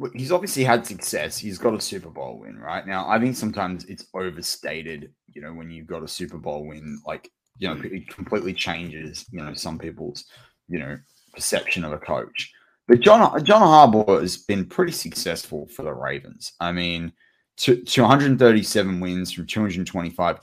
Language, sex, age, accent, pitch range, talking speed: English, male, 20-39, Australian, 85-105 Hz, 175 wpm